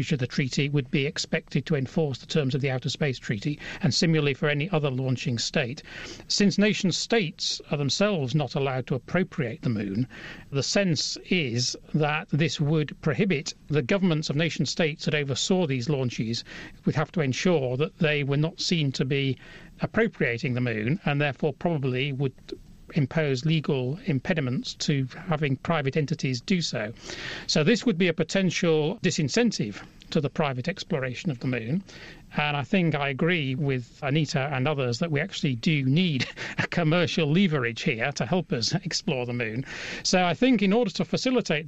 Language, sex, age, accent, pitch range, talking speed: English, male, 40-59, British, 140-175 Hz, 170 wpm